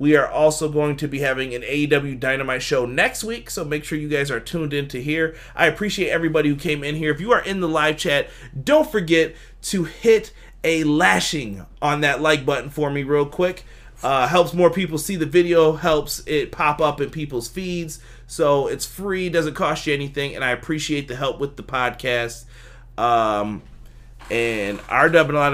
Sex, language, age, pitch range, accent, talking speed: male, English, 30-49, 120-155 Hz, American, 200 wpm